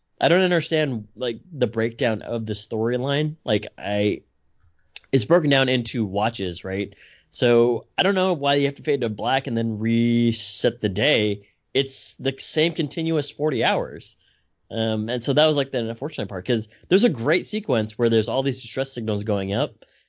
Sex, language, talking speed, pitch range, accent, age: male, English, 180 wpm, 110-140 Hz, American, 20-39